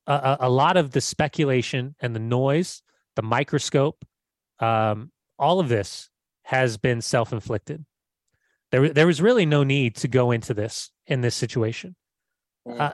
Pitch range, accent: 125-155 Hz, American